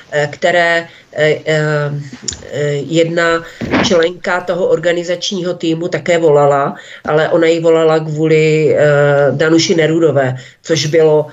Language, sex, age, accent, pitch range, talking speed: Czech, female, 40-59, native, 155-180 Hz, 110 wpm